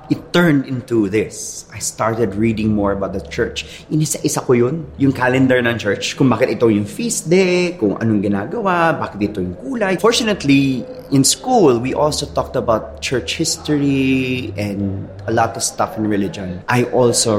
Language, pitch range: English, 100-145 Hz